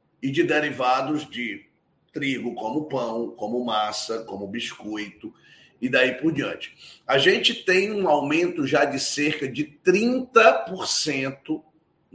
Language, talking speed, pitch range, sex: Portuguese, 125 wpm, 150-250 Hz, male